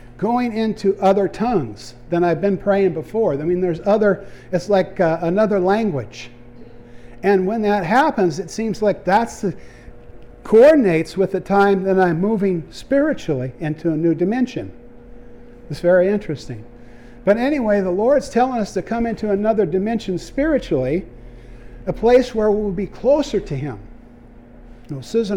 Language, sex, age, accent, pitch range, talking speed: English, male, 50-69, American, 130-205 Hz, 150 wpm